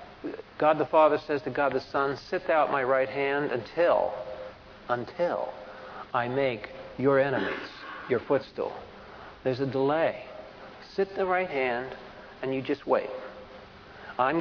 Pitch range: 125-165 Hz